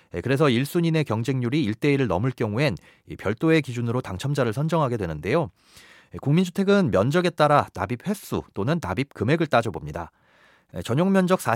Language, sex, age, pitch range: Korean, male, 30-49, 110-175 Hz